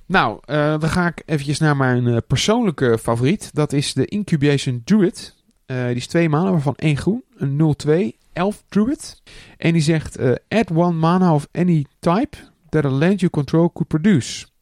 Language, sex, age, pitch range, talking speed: Dutch, male, 40-59, 125-175 Hz, 185 wpm